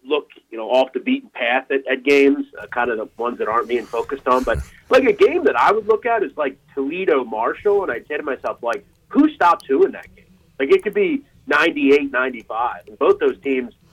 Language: English